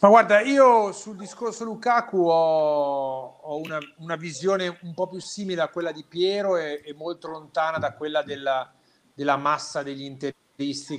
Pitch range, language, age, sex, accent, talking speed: 140-185 Hz, Italian, 40-59, male, native, 165 wpm